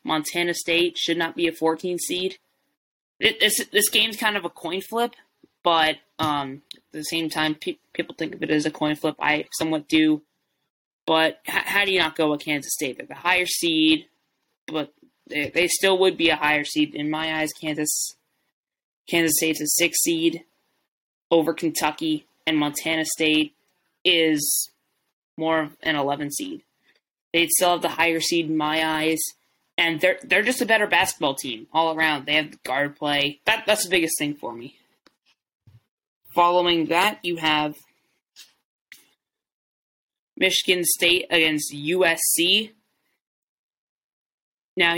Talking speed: 160 wpm